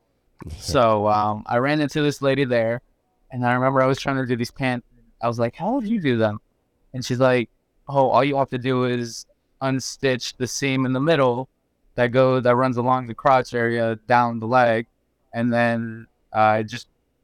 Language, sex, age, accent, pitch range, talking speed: English, male, 20-39, American, 115-130 Hz, 200 wpm